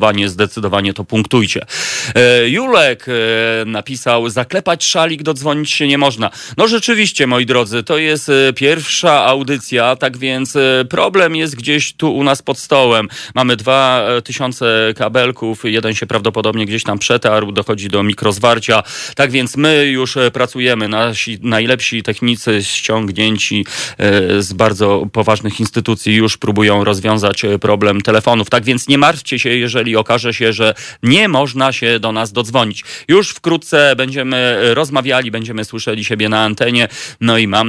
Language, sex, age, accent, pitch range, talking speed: Polish, male, 30-49, native, 110-140 Hz, 140 wpm